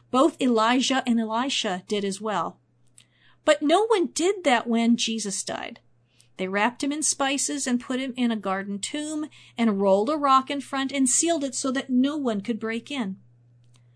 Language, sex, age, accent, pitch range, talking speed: English, female, 50-69, American, 195-270 Hz, 185 wpm